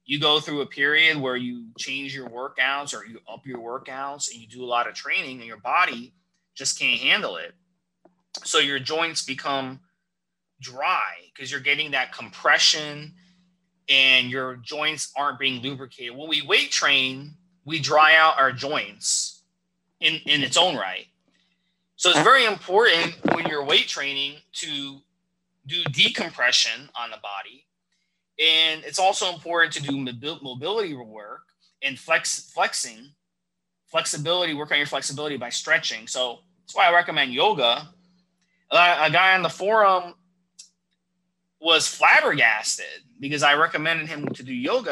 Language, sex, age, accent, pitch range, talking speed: English, male, 30-49, American, 140-180 Hz, 145 wpm